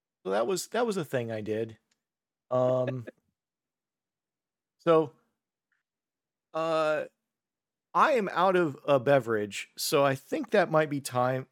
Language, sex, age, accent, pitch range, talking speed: English, male, 40-59, American, 120-160 Hz, 130 wpm